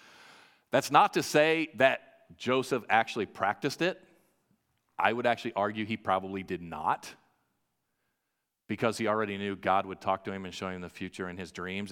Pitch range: 100-135 Hz